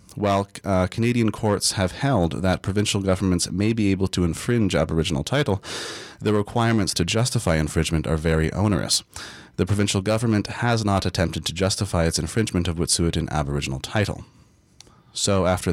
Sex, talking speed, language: male, 155 wpm, English